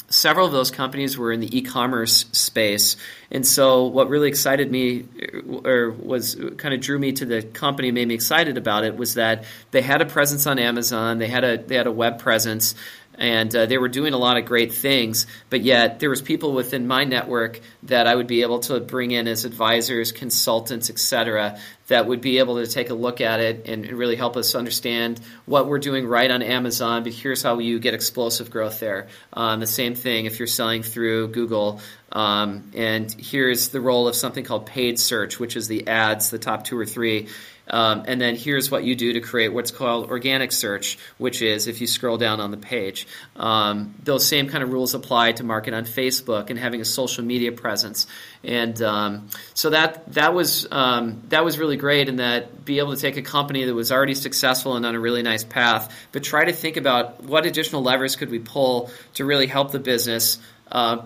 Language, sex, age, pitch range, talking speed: English, male, 40-59, 115-130 Hz, 215 wpm